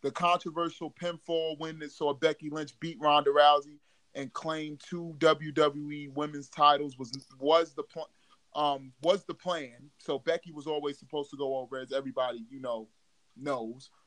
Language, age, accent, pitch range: English, 20-39, American, 140-160 Hz